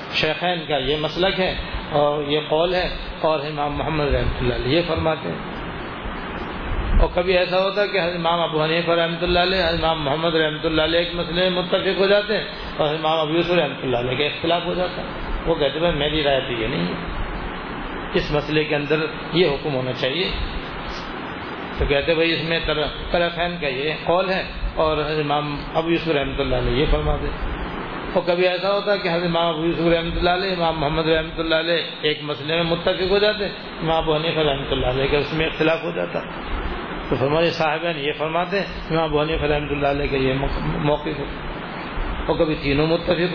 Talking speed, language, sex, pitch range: 190 wpm, Urdu, male, 145-170 Hz